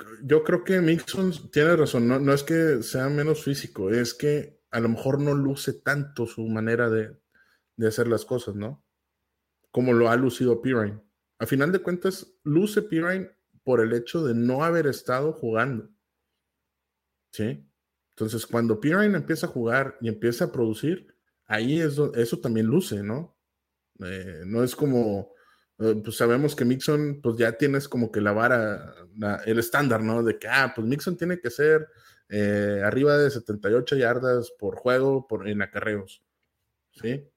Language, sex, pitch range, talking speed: English, male, 100-140 Hz, 160 wpm